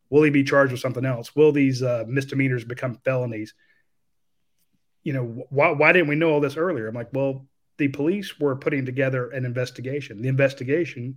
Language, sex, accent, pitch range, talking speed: English, male, American, 125-145 Hz, 190 wpm